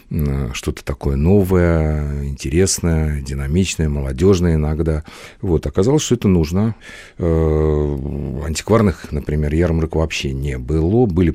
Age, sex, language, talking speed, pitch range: 50-69, male, Russian, 100 wpm, 75-90 Hz